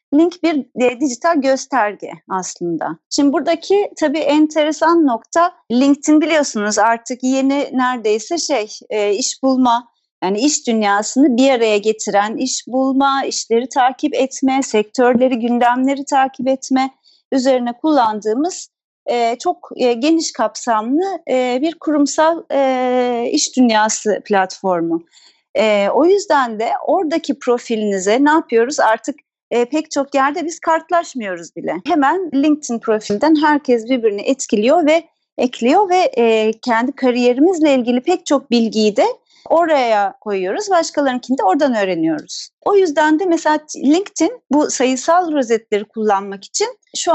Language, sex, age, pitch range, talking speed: Turkish, female, 40-59, 230-310 Hz, 115 wpm